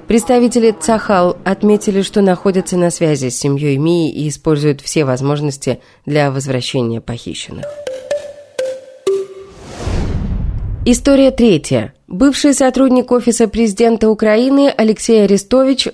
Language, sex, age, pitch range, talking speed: Russian, female, 20-39, 155-225 Hz, 100 wpm